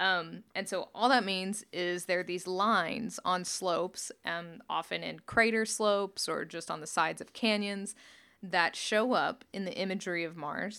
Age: 20-39